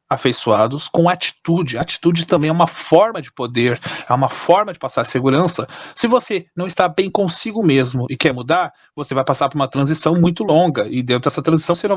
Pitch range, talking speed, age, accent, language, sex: 155-210 Hz, 200 wpm, 30-49, Brazilian, Portuguese, male